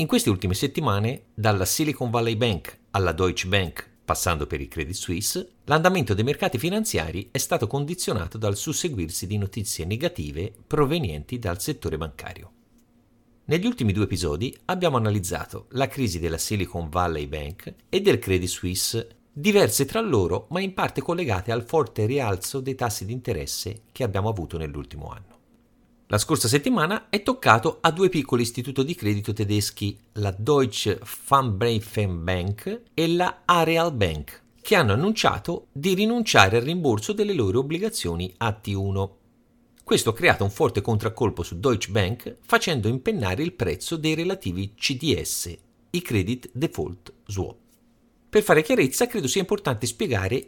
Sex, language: male, Italian